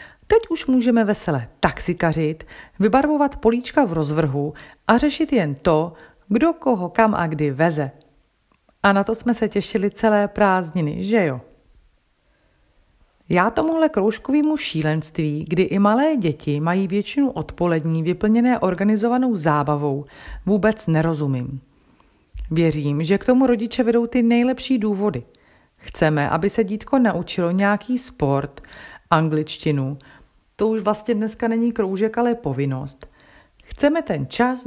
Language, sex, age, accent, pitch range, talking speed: Czech, female, 40-59, native, 150-230 Hz, 125 wpm